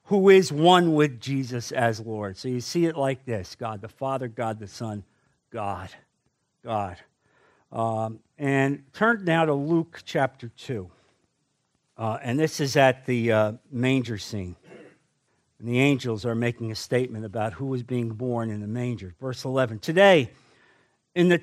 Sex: male